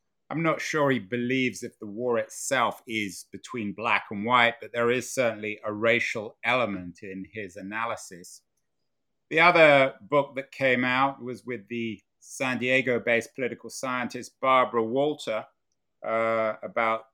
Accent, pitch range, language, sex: British, 110-135 Hz, English, male